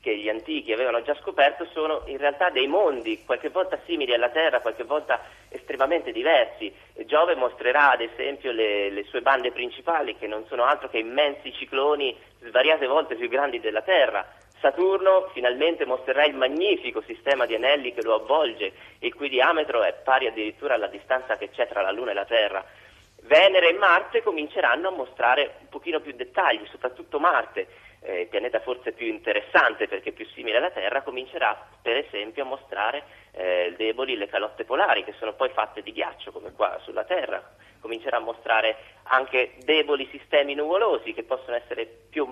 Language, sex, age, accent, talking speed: Italian, male, 30-49, native, 175 wpm